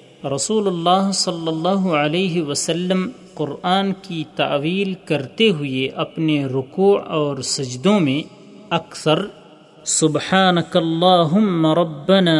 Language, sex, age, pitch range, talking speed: Urdu, male, 40-59, 145-190 Hz, 90 wpm